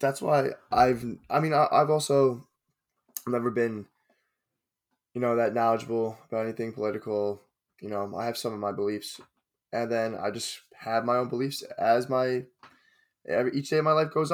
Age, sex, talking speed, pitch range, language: 10-29, male, 175 wpm, 105-130 Hz, English